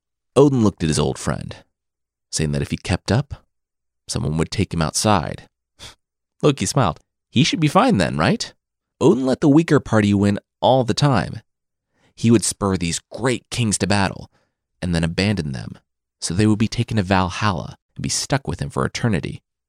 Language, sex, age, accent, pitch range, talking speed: English, male, 30-49, American, 90-130 Hz, 185 wpm